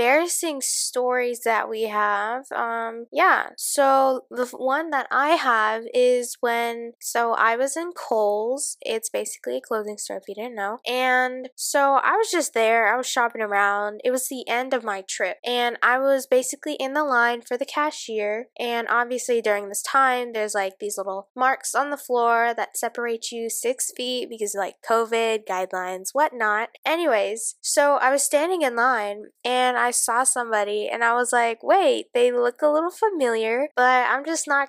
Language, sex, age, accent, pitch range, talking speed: English, female, 10-29, American, 220-275 Hz, 185 wpm